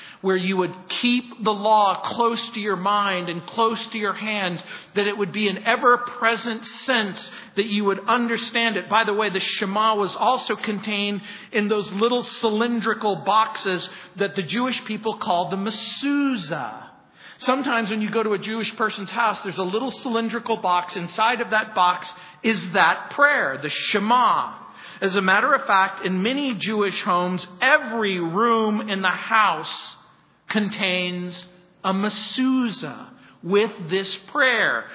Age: 40-59